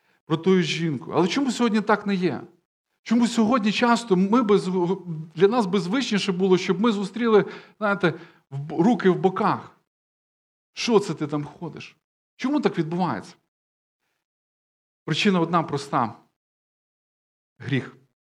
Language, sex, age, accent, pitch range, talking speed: Ukrainian, male, 40-59, native, 155-195 Hz, 125 wpm